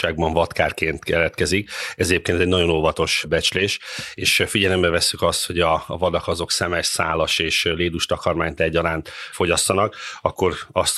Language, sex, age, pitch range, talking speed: Hungarian, male, 30-49, 80-90 Hz, 130 wpm